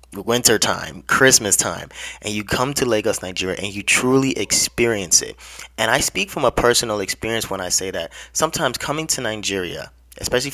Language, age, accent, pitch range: English, 20-39, American, 95-115 Hz